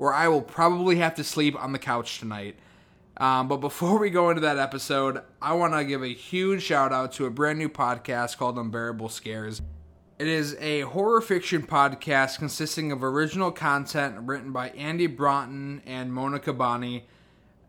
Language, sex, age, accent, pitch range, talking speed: English, male, 20-39, American, 125-155 Hz, 175 wpm